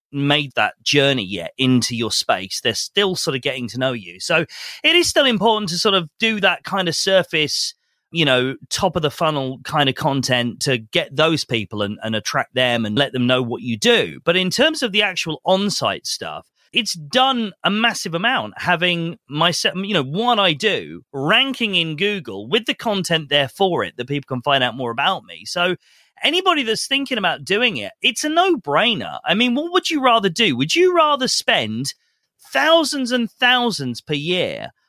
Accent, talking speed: British, 200 wpm